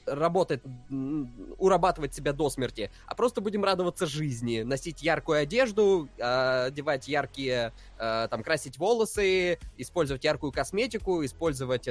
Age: 20-39